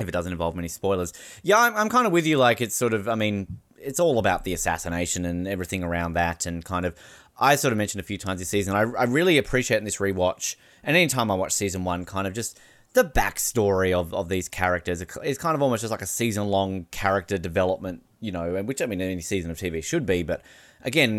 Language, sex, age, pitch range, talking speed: English, male, 20-39, 90-105 Hz, 240 wpm